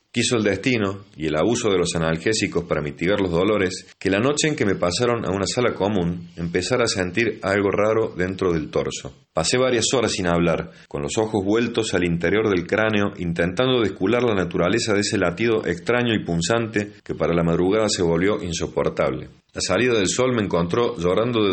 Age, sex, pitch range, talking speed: 40-59, male, 85-115 Hz, 195 wpm